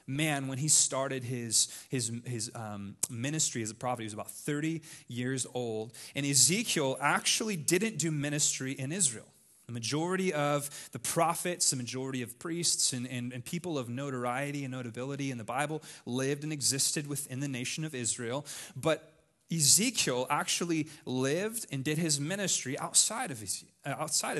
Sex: male